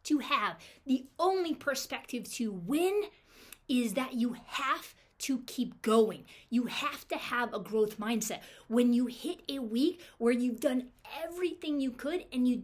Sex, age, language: female, 20-39, English